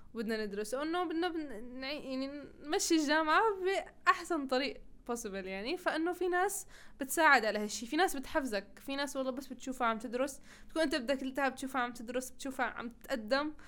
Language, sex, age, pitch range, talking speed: Arabic, female, 20-39, 225-280 Hz, 170 wpm